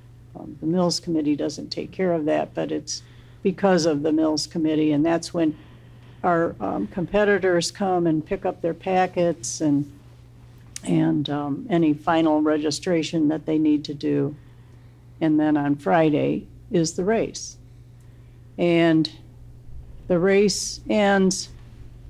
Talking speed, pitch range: 135 wpm, 120-180 Hz